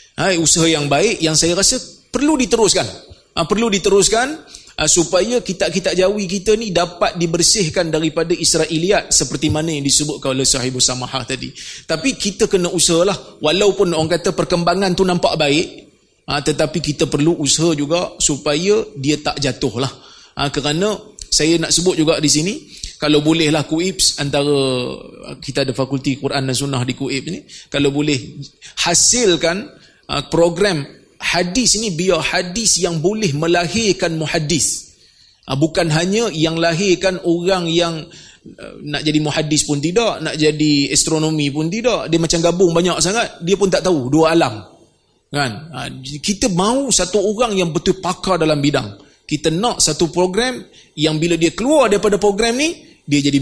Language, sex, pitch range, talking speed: Malay, male, 150-185 Hz, 150 wpm